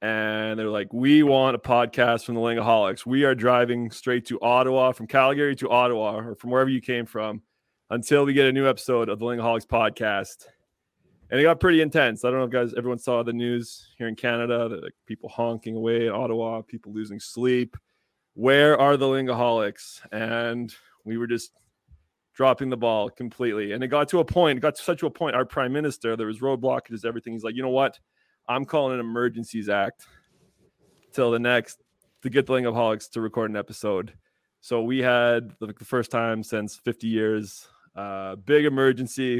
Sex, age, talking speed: male, 30-49, 195 wpm